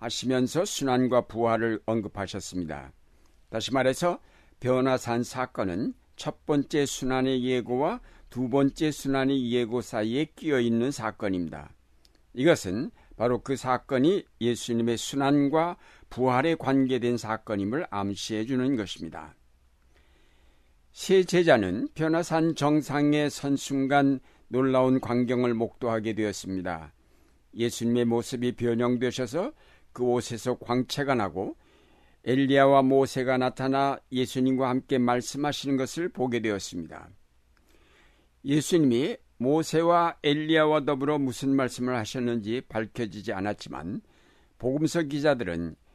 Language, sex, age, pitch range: Korean, male, 60-79, 110-135 Hz